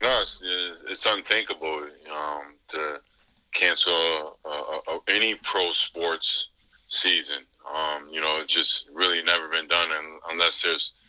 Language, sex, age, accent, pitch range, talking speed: English, male, 20-39, American, 80-90 Hz, 115 wpm